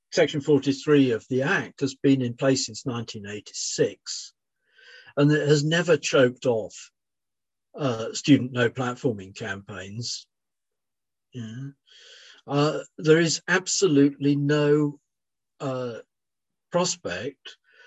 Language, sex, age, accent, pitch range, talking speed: English, male, 50-69, British, 125-155 Hz, 100 wpm